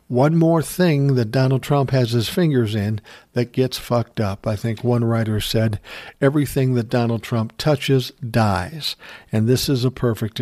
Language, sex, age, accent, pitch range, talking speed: English, male, 60-79, American, 115-160 Hz, 175 wpm